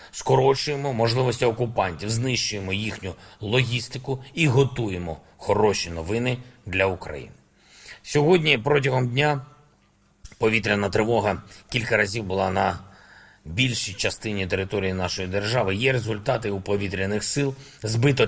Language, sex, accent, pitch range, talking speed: Ukrainian, male, native, 105-135 Hz, 105 wpm